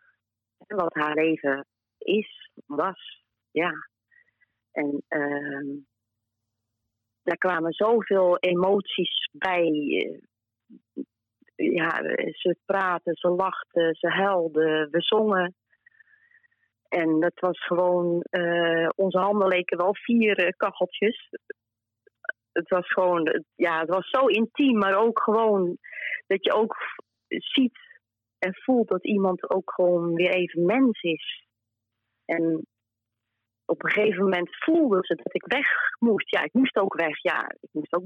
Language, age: Dutch, 30-49